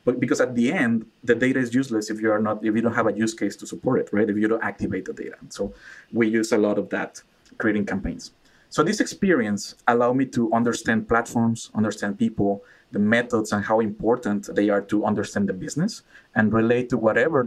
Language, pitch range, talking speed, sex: English, 105-125 Hz, 220 wpm, male